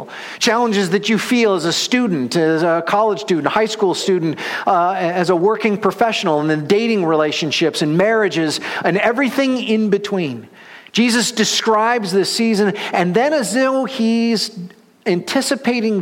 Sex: male